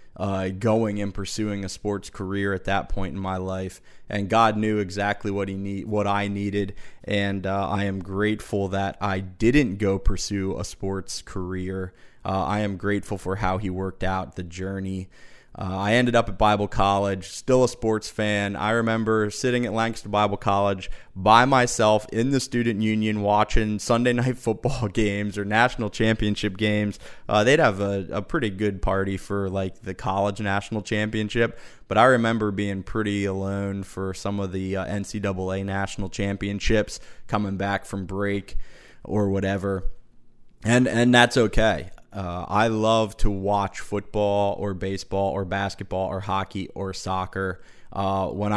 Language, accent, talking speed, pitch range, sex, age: English, American, 165 wpm, 95-110 Hz, male, 20-39